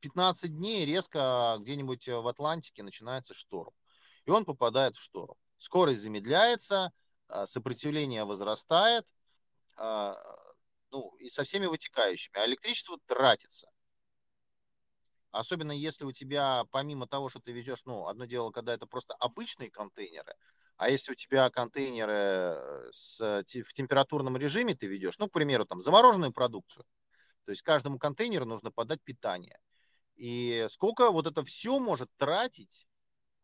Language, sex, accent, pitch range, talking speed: Russian, male, native, 125-200 Hz, 130 wpm